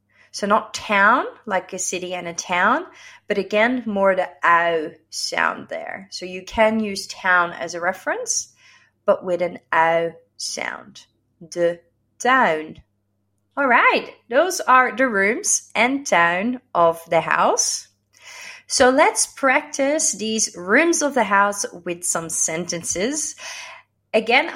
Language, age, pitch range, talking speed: Dutch, 30-49, 165-255 Hz, 130 wpm